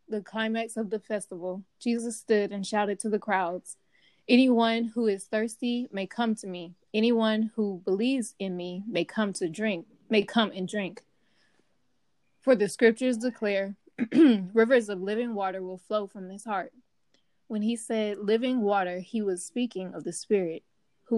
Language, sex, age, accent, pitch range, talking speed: English, female, 20-39, American, 195-225 Hz, 165 wpm